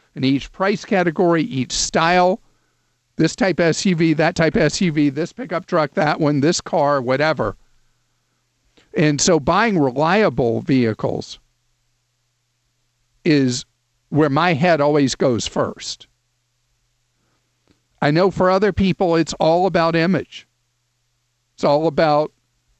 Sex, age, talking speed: male, 50-69, 115 wpm